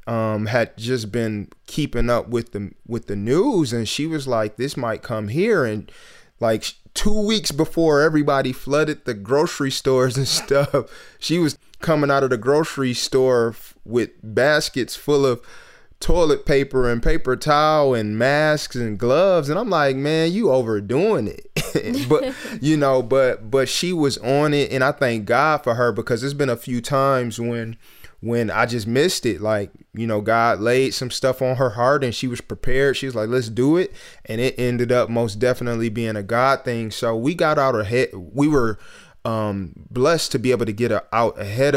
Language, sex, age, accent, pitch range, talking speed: English, male, 20-39, American, 115-140 Hz, 190 wpm